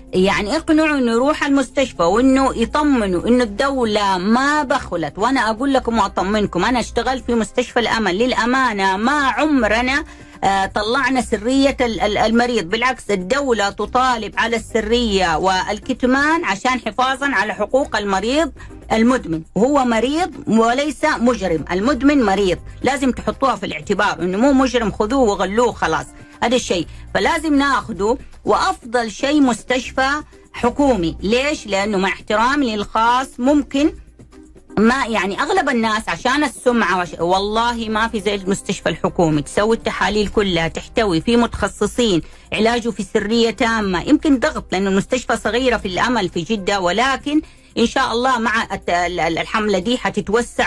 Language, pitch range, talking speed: Arabic, 200-260 Hz, 125 wpm